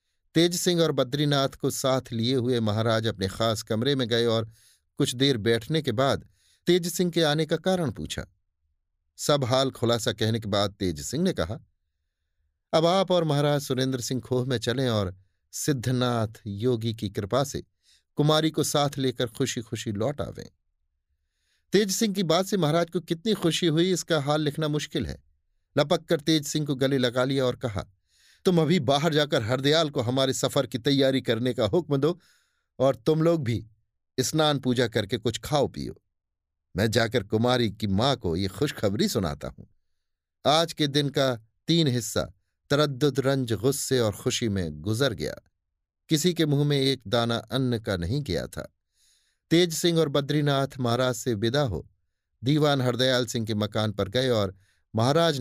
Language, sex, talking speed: Hindi, male, 175 wpm